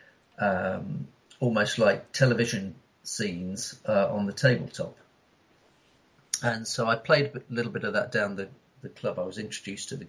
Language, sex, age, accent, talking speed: English, male, 50-69, British, 160 wpm